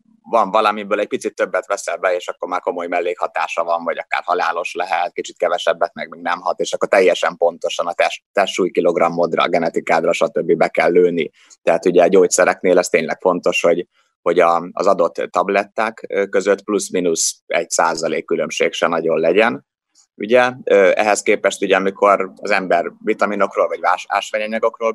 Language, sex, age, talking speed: Hungarian, male, 30-49, 165 wpm